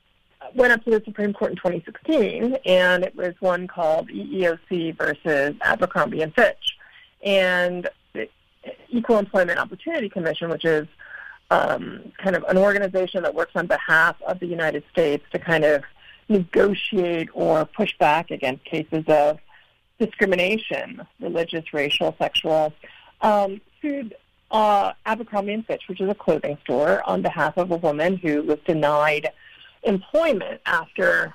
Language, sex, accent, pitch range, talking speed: English, female, American, 170-215 Hz, 140 wpm